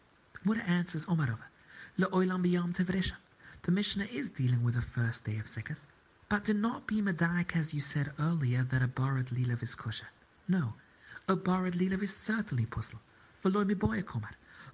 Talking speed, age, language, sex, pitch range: 180 wpm, 50-69, English, male, 130-180 Hz